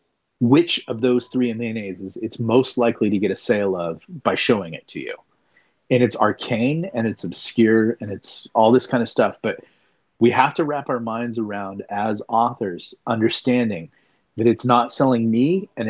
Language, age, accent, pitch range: English, 30-49, American, 105-130 Hz